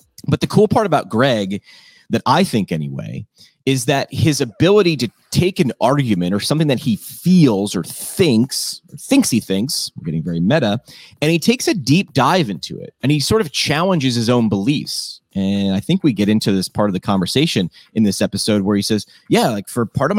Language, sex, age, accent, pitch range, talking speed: English, male, 30-49, American, 105-160 Hz, 210 wpm